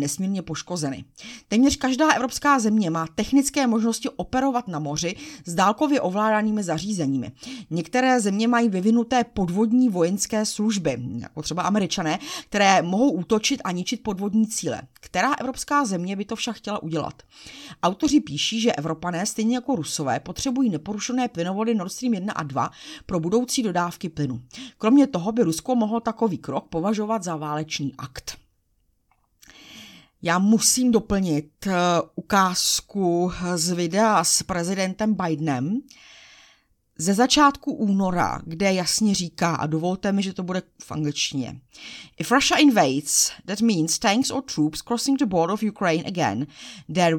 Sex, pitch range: female, 165-235 Hz